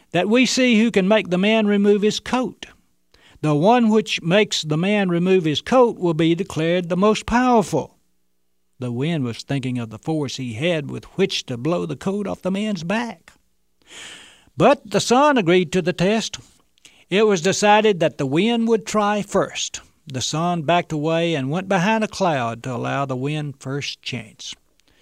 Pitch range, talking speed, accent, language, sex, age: 145-205 Hz, 180 wpm, American, English, male, 60-79